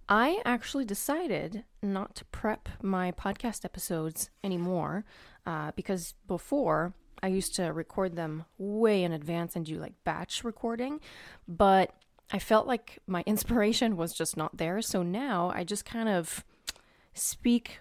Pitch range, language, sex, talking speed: 175-215 Hz, English, female, 145 wpm